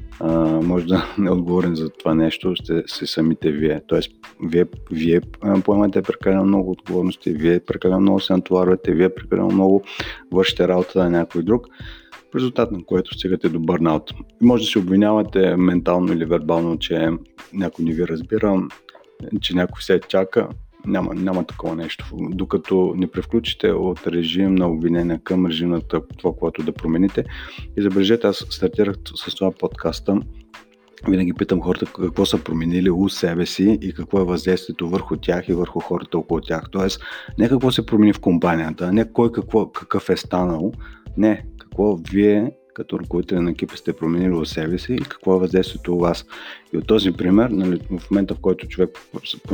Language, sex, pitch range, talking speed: Bulgarian, male, 85-95 Hz, 170 wpm